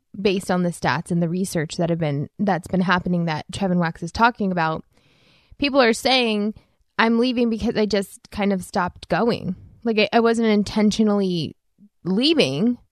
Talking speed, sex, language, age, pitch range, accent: 170 wpm, female, English, 20-39, 175-215 Hz, American